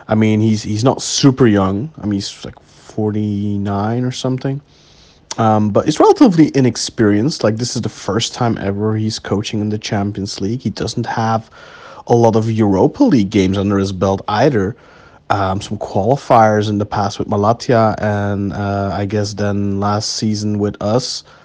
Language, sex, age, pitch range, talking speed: English, male, 30-49, 100-125 Hz, 175 wpm